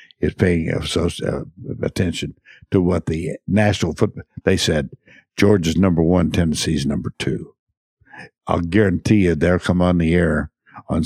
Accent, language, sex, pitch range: American, English, male, 85-110 Hz